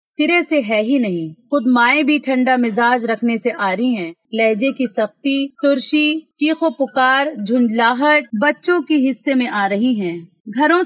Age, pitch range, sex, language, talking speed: 30-49, 220-280 Hz, female, Urdu, 165 wpm